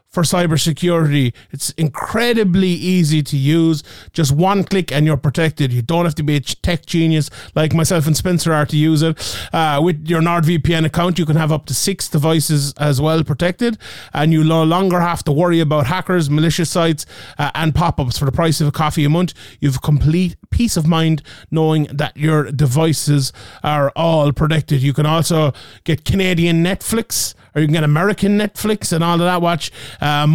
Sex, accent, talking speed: male, Irish, 190 wpm